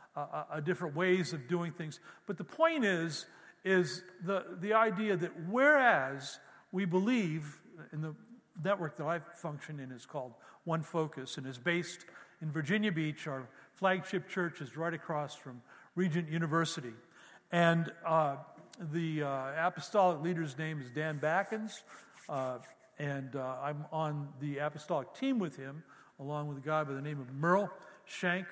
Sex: male